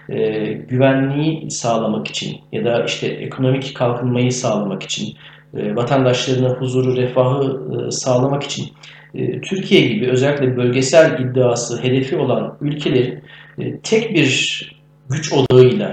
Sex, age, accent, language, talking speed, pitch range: male, 40-59, native, Turkish, 100 wpm, 125-150 Hz